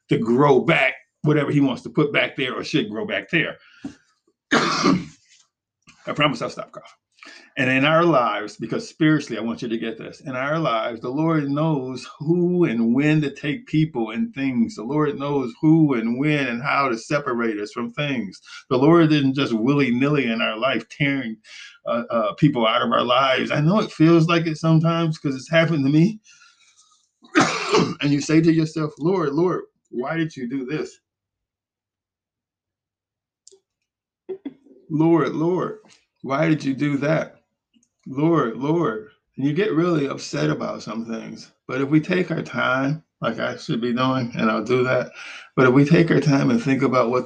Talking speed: 180 wpm